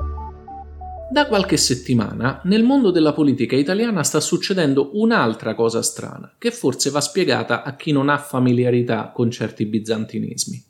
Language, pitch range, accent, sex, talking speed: Italian, 120-180 Hz, native, male, 140 wpm